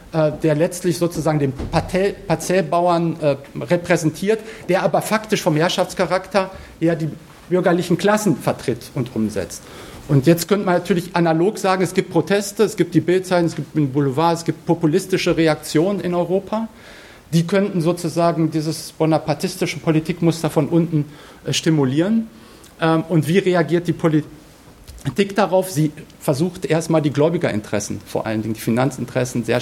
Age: 50-69